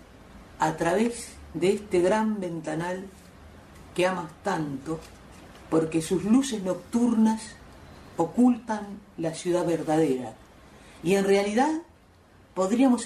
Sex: female